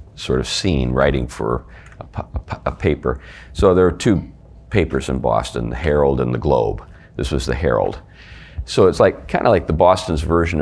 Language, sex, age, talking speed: English, male, 40-59, 185 wpm